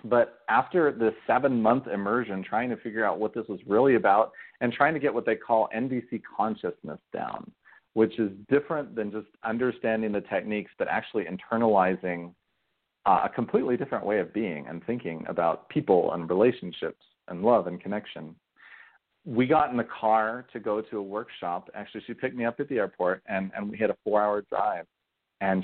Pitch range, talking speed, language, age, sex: 95-115 Hz, 185 wpm, English, 40-59, male